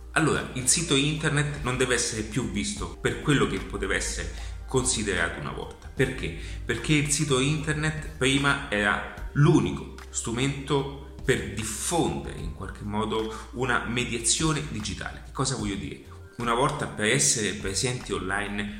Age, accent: 30-49, native